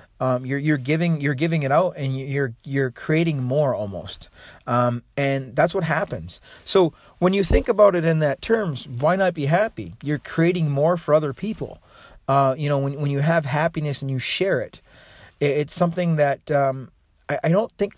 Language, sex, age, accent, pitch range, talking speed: English, male, 40-59, American, 135-165 Hz, 195 wpm